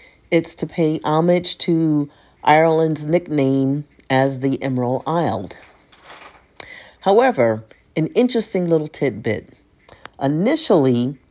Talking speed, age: 90 wpm, 40-59